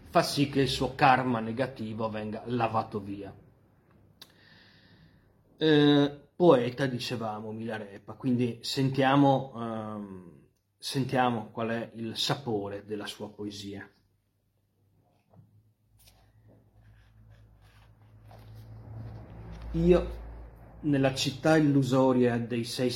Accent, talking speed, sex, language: native, 80 wpm, male, Italian